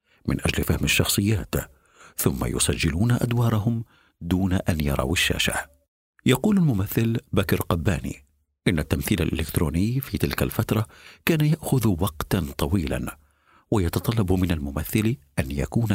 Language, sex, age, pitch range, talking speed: Arabic, male, 60-79, 80-120 Hz, 115 wpm